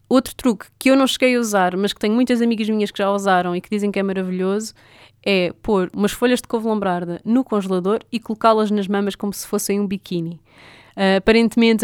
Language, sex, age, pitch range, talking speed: Portuguese, female, 20-39, 190-215 Hz, 215 wpm